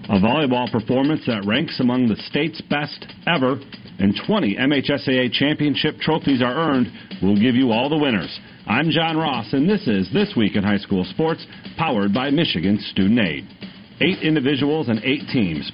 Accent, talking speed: American, 170 wpm